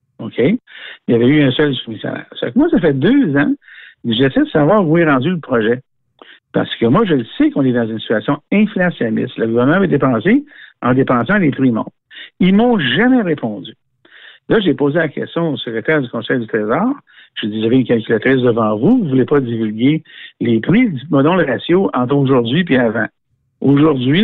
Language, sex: French, male